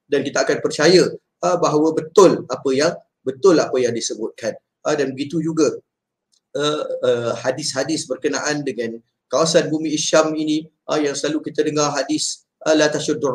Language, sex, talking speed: Malay, male, 155 wpm